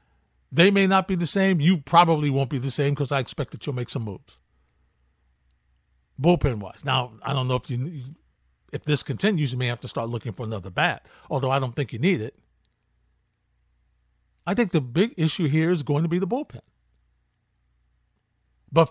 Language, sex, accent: English, male, American